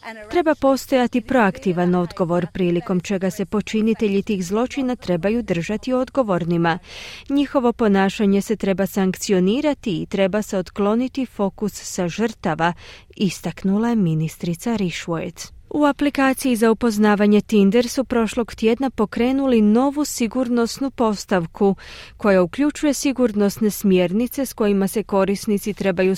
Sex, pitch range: female, 190-240 Hz